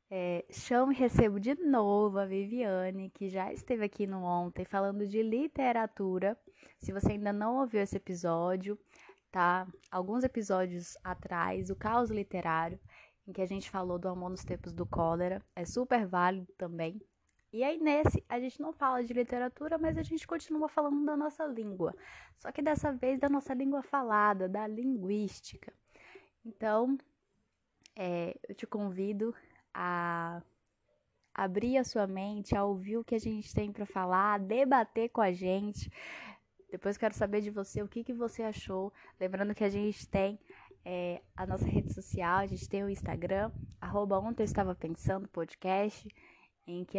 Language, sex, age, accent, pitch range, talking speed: Portuguese, female, 10-29, Brazilian, 185-240 Hz, 160 wpm